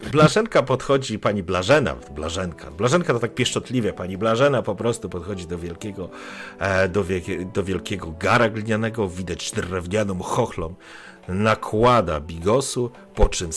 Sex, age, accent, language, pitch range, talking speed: male, 50-69, native, Polish, 90-135 Hz, 125 wpm